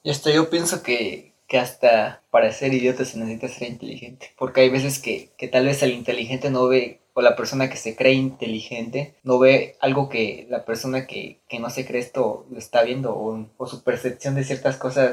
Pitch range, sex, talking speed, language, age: 120-135 Hz, male, 215 wpm, Spanish, 20-39